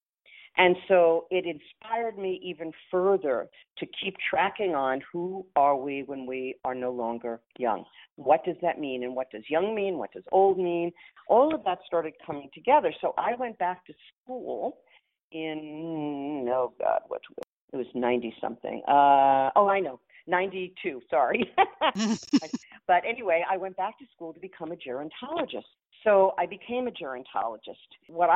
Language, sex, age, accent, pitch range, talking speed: English, female, 50-69, American, 130-195 Hz, 160 wpm